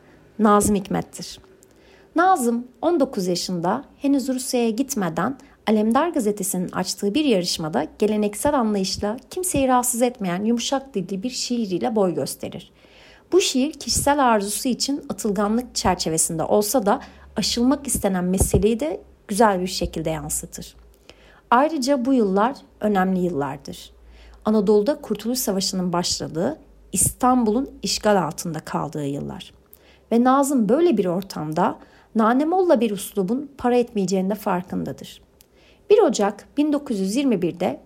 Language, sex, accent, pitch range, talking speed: Turkish, female, native, 185-255 Hz, 110 wpm